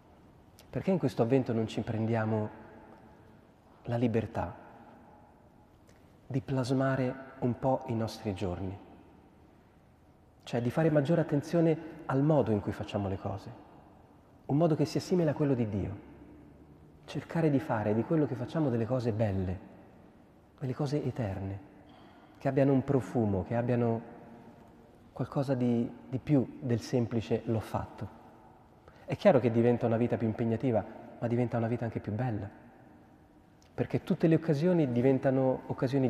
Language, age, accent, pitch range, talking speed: Italian, 30-49, native, 105-130 Hz, 140 wpm